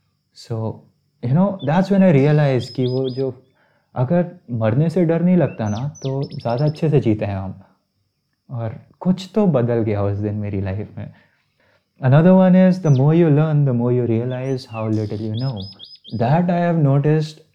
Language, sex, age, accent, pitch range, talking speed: Hindi, male, 30-49, native, 110-145 Hz, 170 wpm